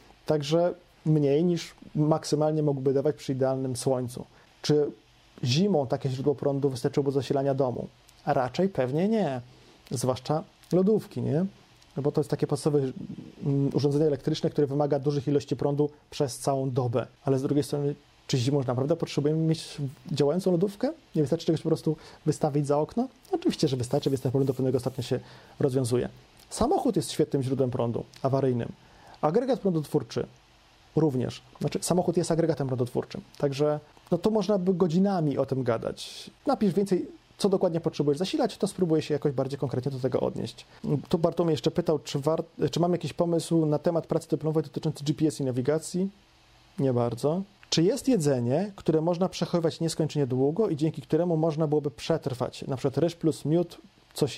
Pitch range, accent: 140-170 Hz, native